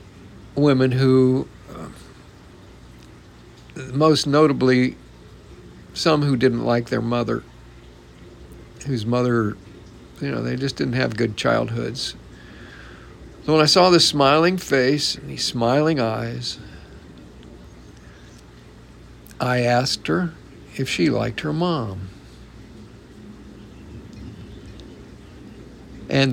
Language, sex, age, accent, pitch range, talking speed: English, male, 50-69, American, 85-135 Hz, 95 wpm